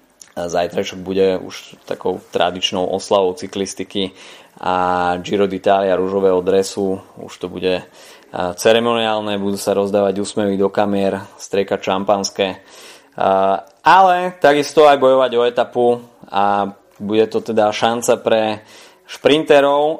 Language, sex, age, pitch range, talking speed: Slovak, male, 20-39, 100-125 Hz, 110 wpm